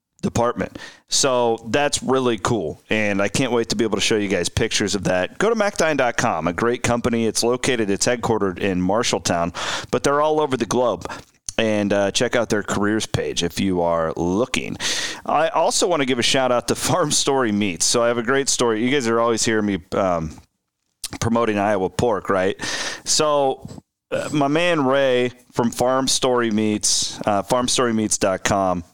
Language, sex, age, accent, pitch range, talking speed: English, male, 40-59, American, 100-125 Hz, 180 wpm